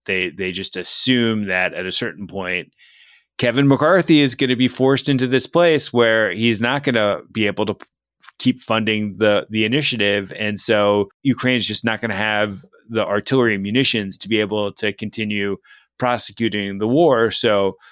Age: 30-49